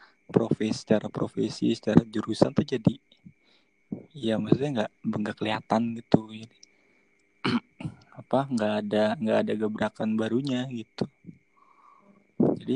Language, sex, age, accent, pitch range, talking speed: Indonesian, male, 20-39, native, 105-135 Hz, 110 wpm